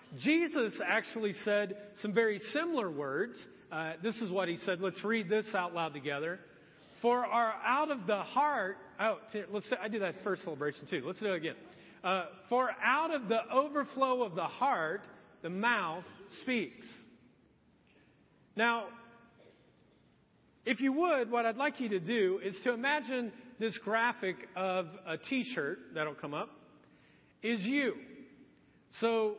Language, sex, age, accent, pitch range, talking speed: English, male, 40-59, American, 195-255 Hz, 150 wpm